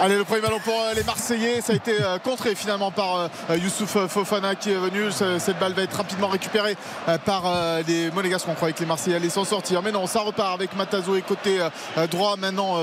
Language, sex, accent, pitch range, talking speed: French, male, French, 180-205 Hz, 210 wpm